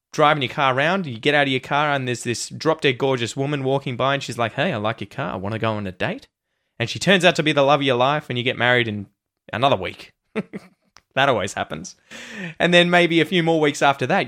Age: 20-39